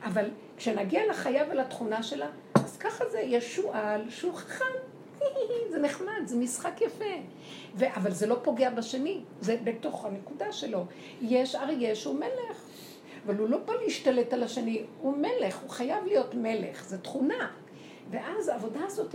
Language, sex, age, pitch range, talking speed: Hebrew, female, 50-69, 205-290 Hz, 150 wpm